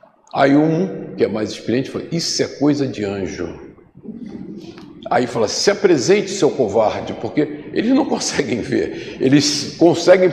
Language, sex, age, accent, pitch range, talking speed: Portuguese, male, 50-69, Brazilian, 125-170 Hz, 145 wpm